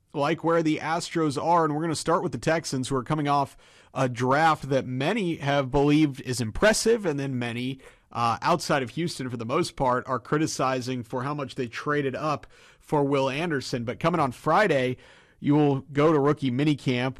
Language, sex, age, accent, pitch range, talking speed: English, male, 30-49, American, 125-150 Hz, 200 wpm